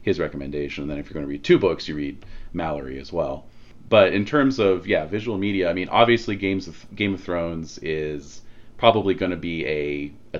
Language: English